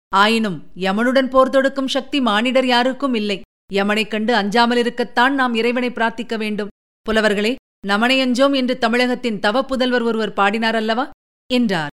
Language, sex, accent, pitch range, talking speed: Tamil, female, native, 205-255 Hz, 125 wpm